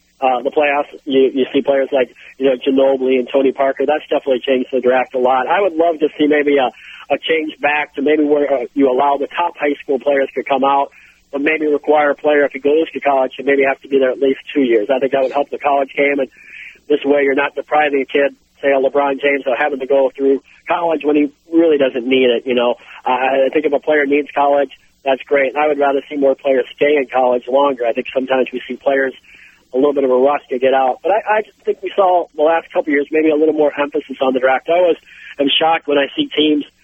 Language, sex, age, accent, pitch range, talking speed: English, male, 40-59, American, 135-150 Hz, 265 wpm